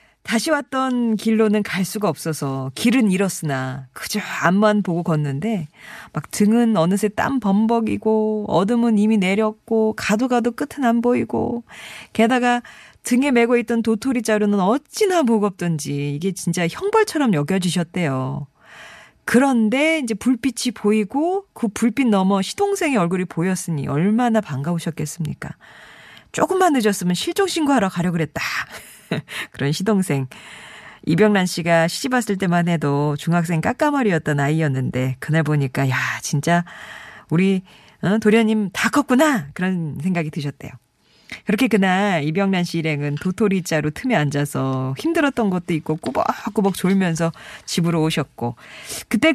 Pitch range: 160-230 Hz